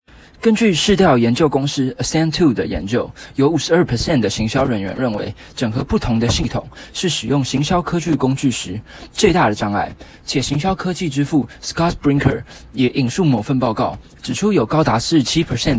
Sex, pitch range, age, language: male, 115-160 Hz, 20-39, Chinese